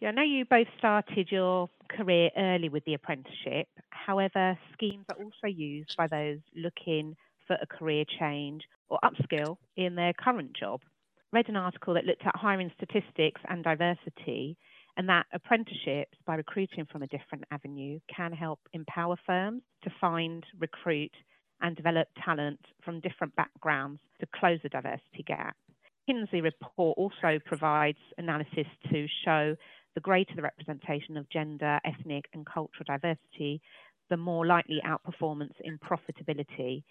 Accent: British